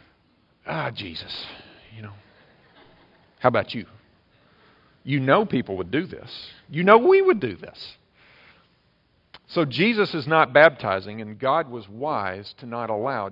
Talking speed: 140 wpm